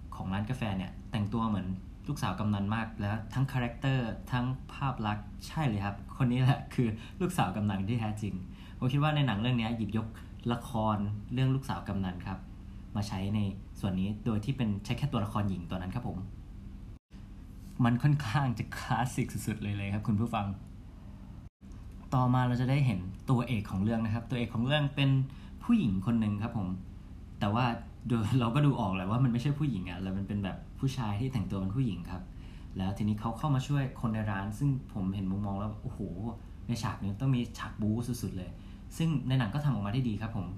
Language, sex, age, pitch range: Thai, male, 20-39, 95-125 Hz